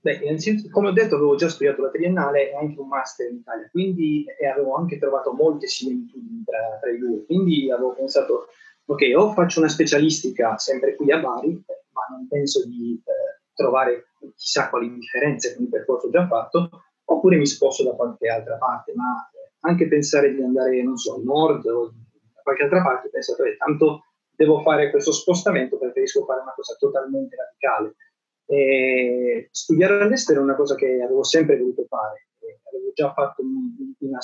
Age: 30-49